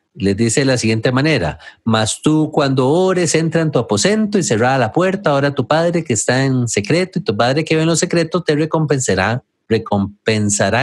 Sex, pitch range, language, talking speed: male, 125-180 Hz, English, 200 wpm